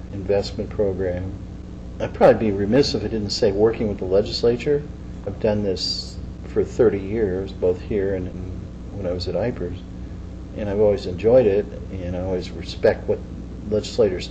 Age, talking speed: 40-59, 165 wpm